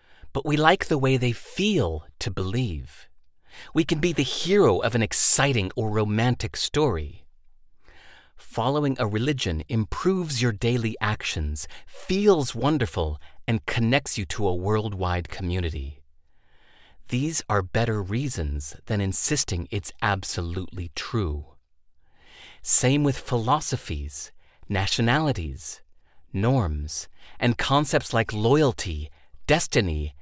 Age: 30-49